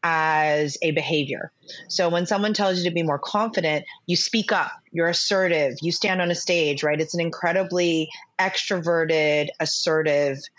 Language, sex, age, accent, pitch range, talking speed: English, female, 30-49, American, 155-195 Hz, 160 wpm